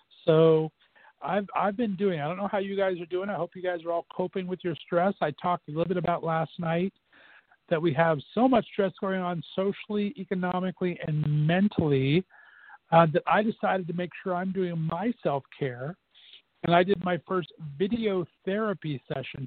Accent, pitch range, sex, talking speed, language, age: American, 155-190 Hz, male, 190 wpm, English, 50-69